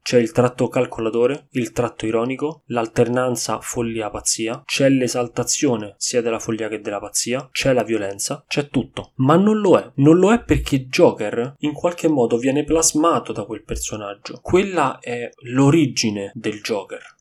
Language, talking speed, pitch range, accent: Italian, 155 wpm, 115-150 Hz, native